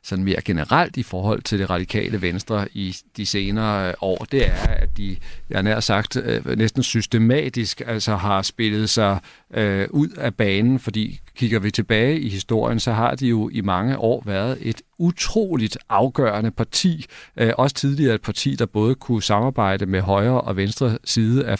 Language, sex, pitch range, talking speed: Danish, male, 105-125 Hz, 170 wpm